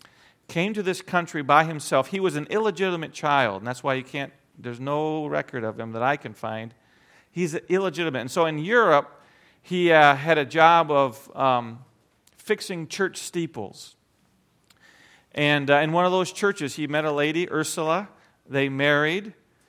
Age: 40-59